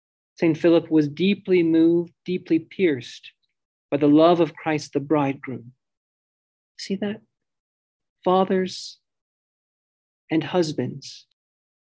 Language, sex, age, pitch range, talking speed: English, male, 40-59, 150-180 Hz, 95 wpm